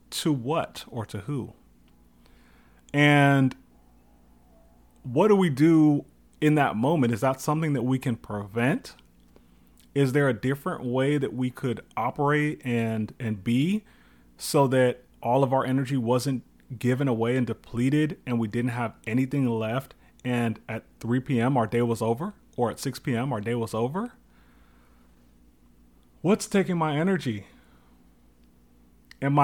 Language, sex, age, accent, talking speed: English, male, 30-49, American, 145 wpm